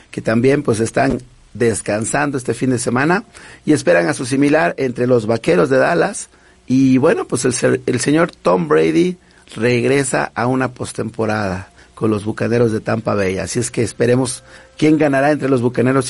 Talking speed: 170 wpm